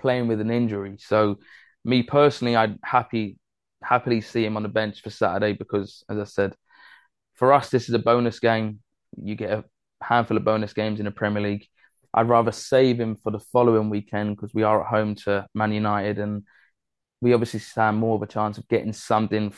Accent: British